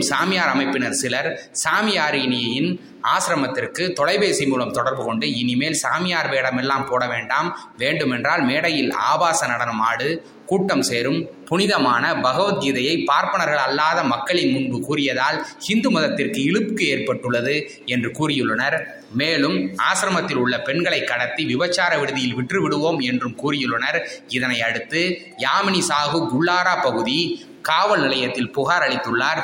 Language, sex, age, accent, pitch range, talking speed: Tamil, male, 20-39, native, 130-175 Hz, 100 wpm